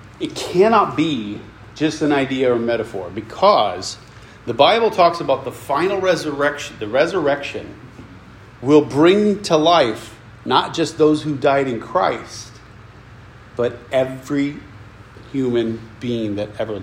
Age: 40-59